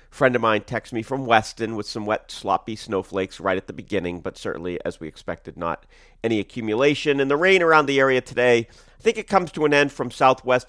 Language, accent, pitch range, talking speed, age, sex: English, American, 100-135 Hz, 225 wpm, 40-59, male